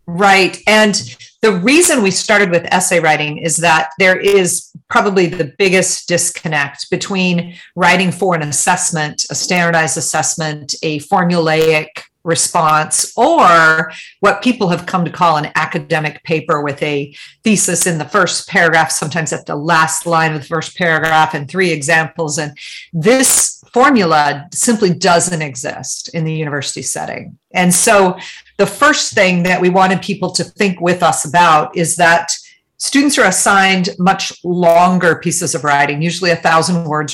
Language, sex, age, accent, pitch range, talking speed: English, female, 40-59, American, 160-190 Hz, 155 wpm